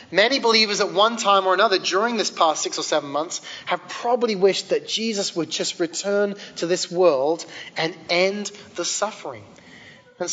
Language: English